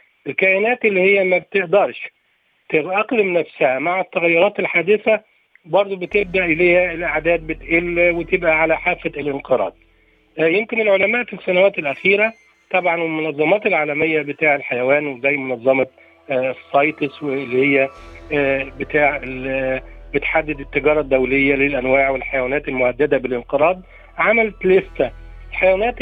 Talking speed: 105 wpm